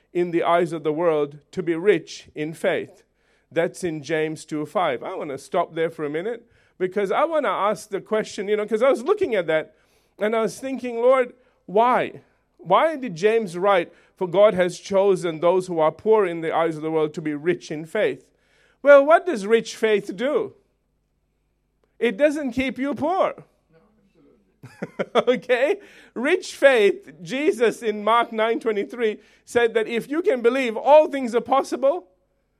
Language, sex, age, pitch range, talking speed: English, male, 40-59, 185-270 Hz, 175 wpm